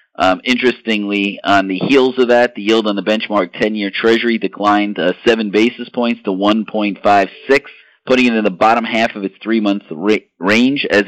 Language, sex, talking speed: English, male, 180 wpm